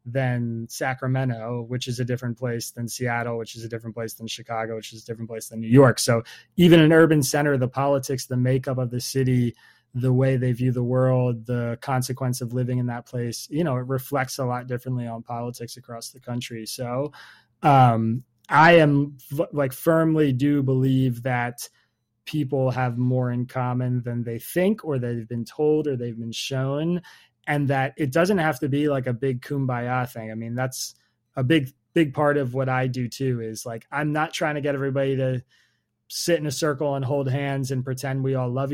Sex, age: male, 20-39